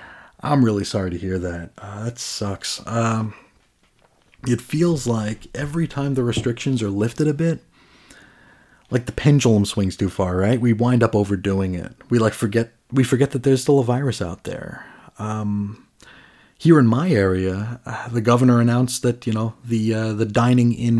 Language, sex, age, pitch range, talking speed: English, male, 30-49, 105-130 Hz, 175 wpm